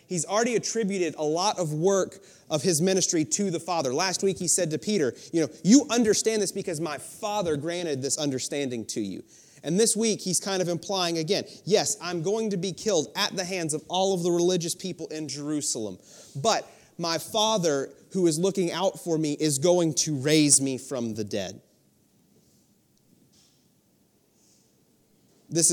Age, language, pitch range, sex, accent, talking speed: 30-49, English, 135-180 Hz, male, American, 175 wpm